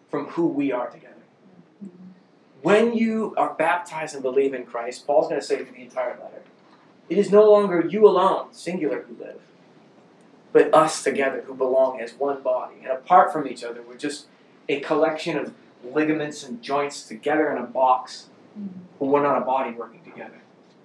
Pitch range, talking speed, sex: 135-200 Hz, 180 wpm, male